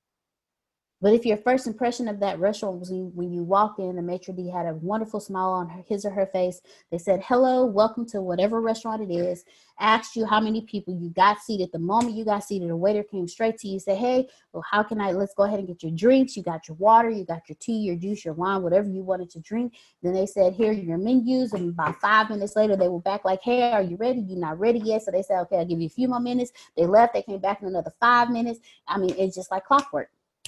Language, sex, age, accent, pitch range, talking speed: English, female, 20-39, American, 180-230 Hz, 265 wpm